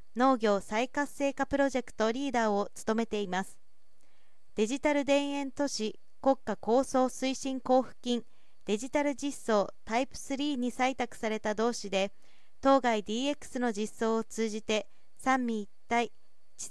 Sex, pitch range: female, 225-275 Hz